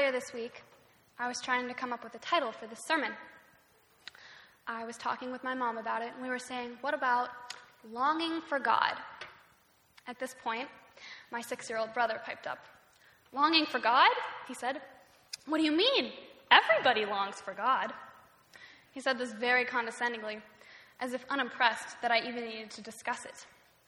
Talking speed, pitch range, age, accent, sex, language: 170 wpm, 230-260 Hz, 10-29, American, female, English